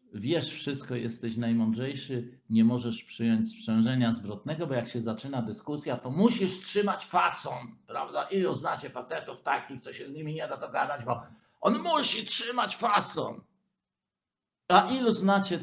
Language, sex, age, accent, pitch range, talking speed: Polish, male, 50-69, native, 115-190 Hz, 145 wpm